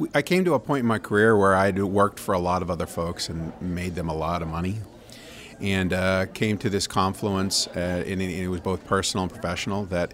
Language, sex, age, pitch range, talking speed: English, male, 40-59, 90-105 Hz, 235 wpm